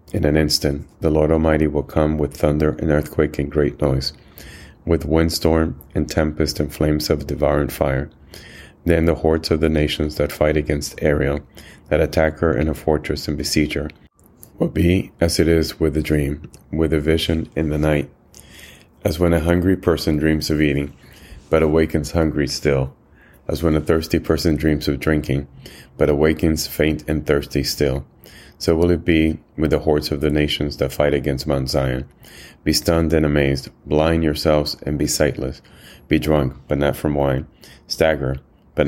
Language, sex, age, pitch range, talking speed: English, male, 30-49, 70-80 Hz, 175 wpm